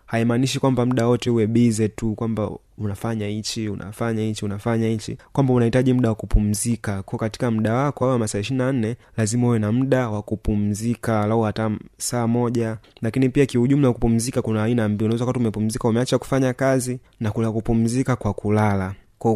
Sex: male